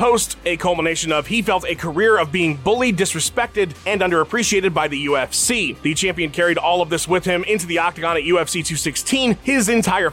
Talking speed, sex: 195 wpm, male